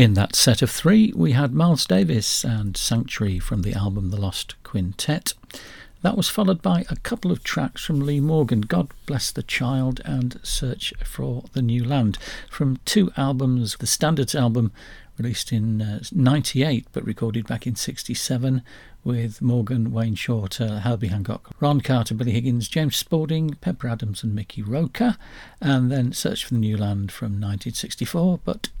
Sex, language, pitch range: male, English, 110-150 Hz